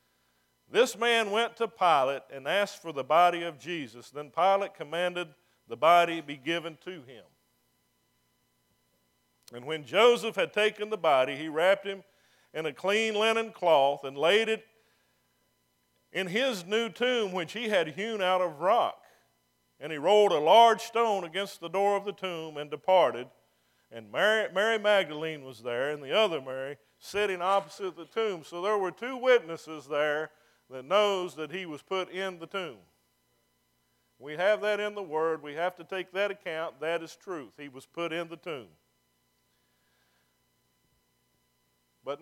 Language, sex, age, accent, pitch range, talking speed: English, male, 50-69, American, 150-205 Hz, 165 wpm